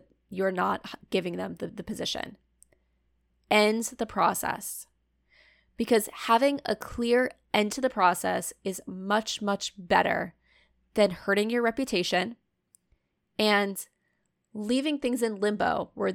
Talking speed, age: 120 wpm, 20-39